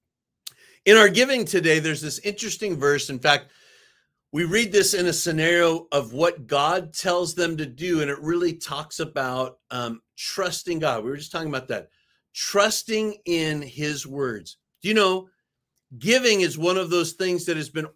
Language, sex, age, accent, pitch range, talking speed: English, male, 50-69, American, 135-195 Hz, 175 wpm